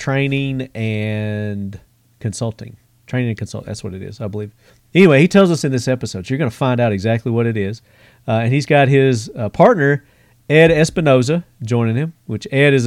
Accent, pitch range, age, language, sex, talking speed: American, 110-135 Hz, 40-59, English, male, 200 wpm